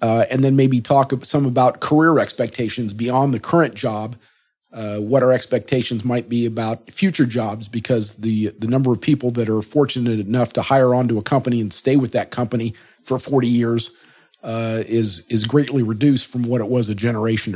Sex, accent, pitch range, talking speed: male, American, 110-130 Hz, 190 wpm